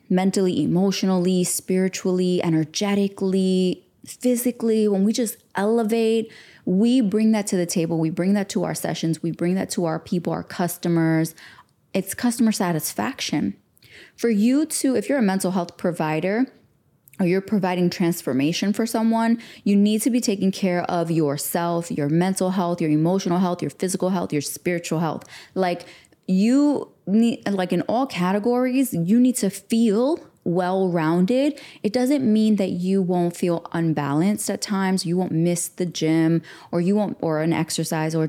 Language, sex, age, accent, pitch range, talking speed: English, female, 20-39, American, 170-210 Hz, 160 wpm